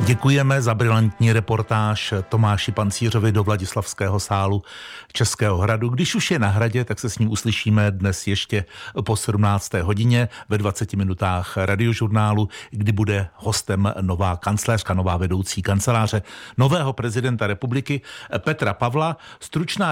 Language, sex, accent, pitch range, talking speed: Czech, male, native, 105-135 Hz, 135 wpm